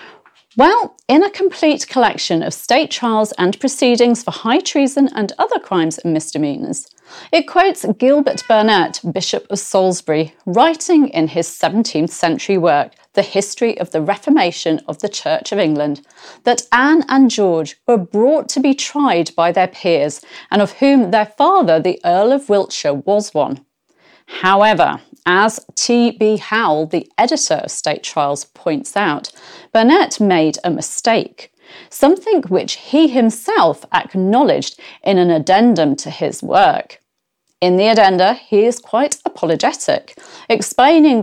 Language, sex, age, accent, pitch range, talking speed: English, female, 40-59, British, 185-275 Hz, 145 wpm